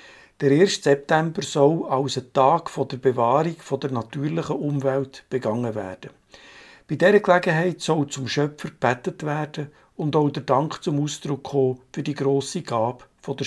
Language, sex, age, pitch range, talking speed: German, male, 60-79, 130-150 Hz, 150 wpm